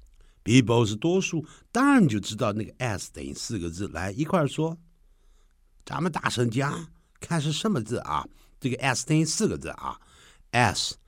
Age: 60-79